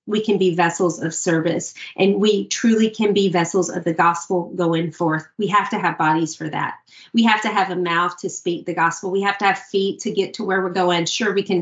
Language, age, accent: English, 30-49, American